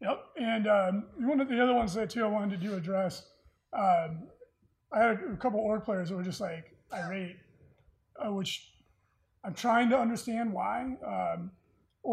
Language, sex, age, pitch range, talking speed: English, male, 20-39, 195-240 Hz, 180 wpm